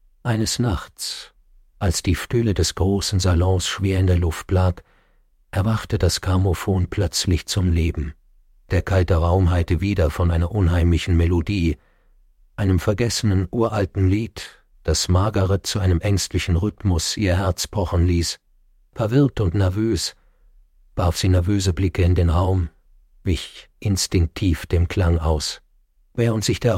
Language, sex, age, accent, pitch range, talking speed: German, male, 50-69, German, 85-105 Hz, 135 wpm